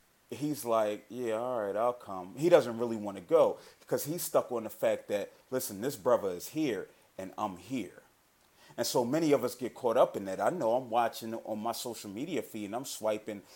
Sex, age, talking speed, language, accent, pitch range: male, 30-49, 220 wpm, English, American, 105-130 Hz